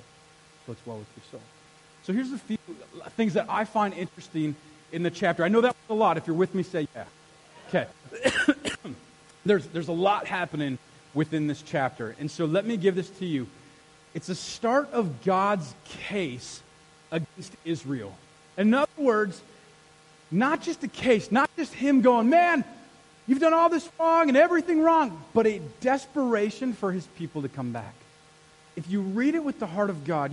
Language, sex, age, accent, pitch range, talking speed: English, male, 30-49, American, 155-235 Hz, 180 wpm